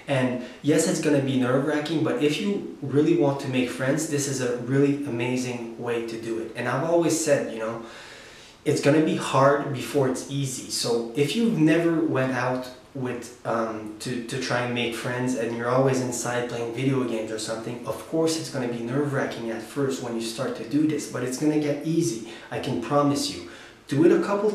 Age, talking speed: 20-39, 220 wpm